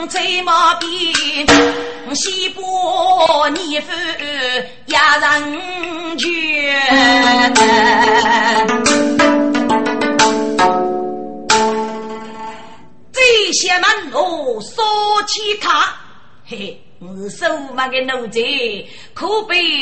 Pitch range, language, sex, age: 245-375 Hz, Chinese, female, 30-49